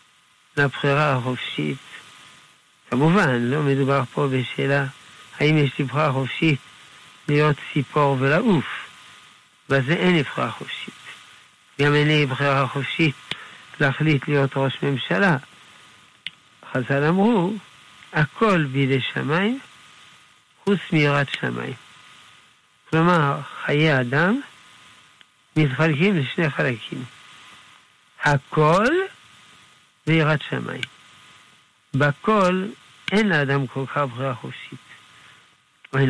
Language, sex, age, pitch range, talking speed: Hebrew, male, 60-79, 115-155 Hz, 85 wpm